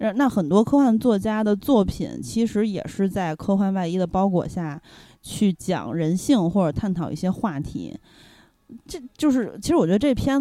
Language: Chinese